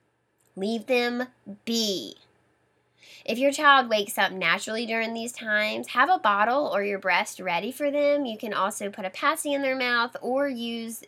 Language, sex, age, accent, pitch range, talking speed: English, female, 10-29, American, 185-250 Hz, 175 wpm